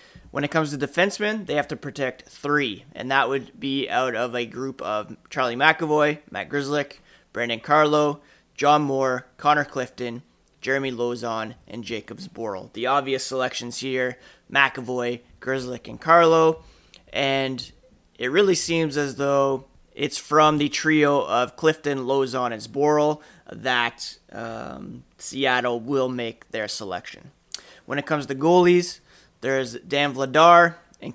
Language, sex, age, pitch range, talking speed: English, male, 30-49, 130-150 Hz, 140 wpm